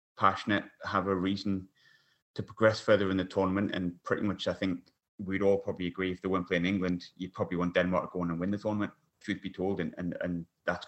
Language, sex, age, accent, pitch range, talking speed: English, male, 30-49, British, 90-100 Hz, 235 wpm